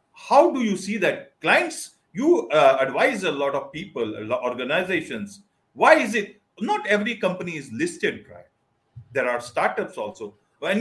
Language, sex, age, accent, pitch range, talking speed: English, male, 50-69, Indian, 165-235 Hz, 165 wpm